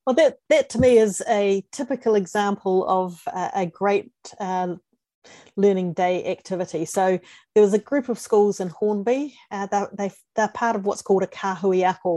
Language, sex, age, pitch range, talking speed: English, female, 40-59, 180-205 Hz, 175 wpm